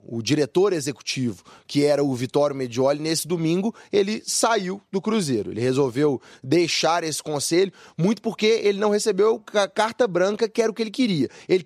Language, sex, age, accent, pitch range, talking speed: Portuguese, male, 20-39, Brazilian, 140-180 Hz, 175 wpm